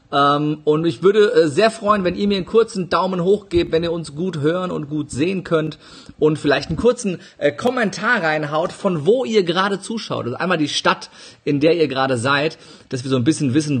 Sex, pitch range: male, 140-180 Hz